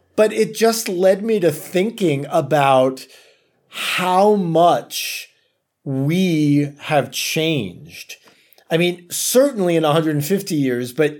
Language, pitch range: English, 135-165 Hz